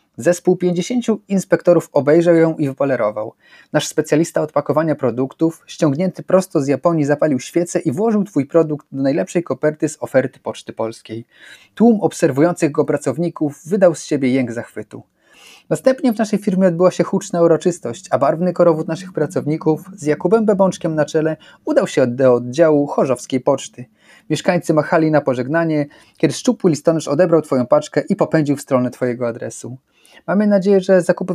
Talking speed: 155 wpm